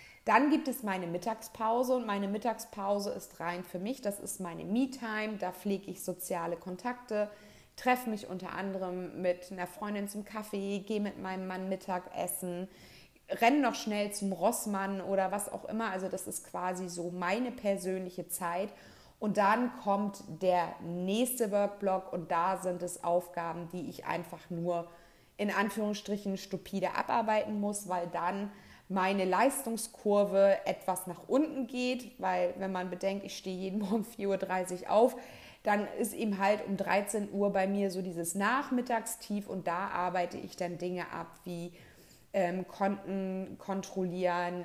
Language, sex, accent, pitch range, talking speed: German, female, German, 180-205 Hz, 155 wpm